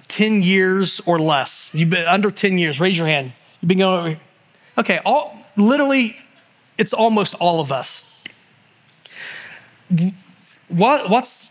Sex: male